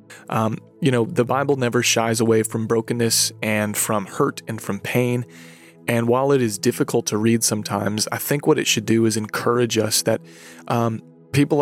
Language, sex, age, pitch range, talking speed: English, male, 30-49, 110-120 Hz, 185 wpm